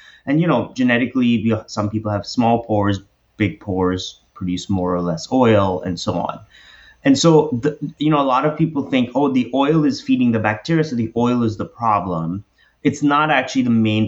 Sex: male